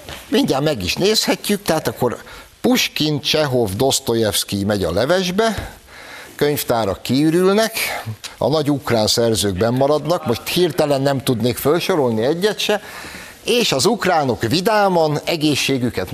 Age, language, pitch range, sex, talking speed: 60-79, Hungarian, 100-135 Hz, male, 115 wpm